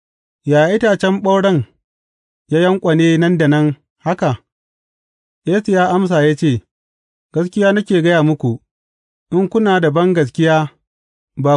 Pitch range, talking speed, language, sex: 125-180 Hz, 120 wpm, English, male